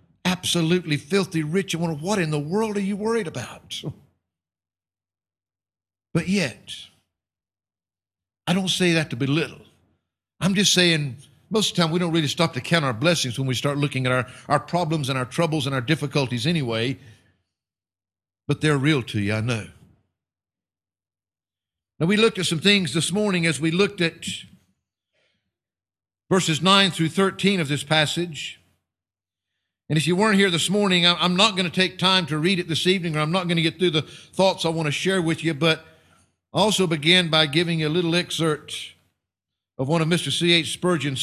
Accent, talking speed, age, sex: American, 185 wpm, 50-69, male